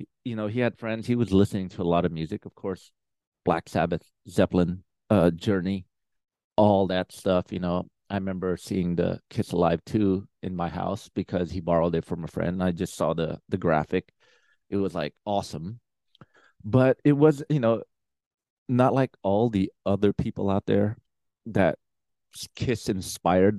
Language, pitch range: English, 85-105 Hz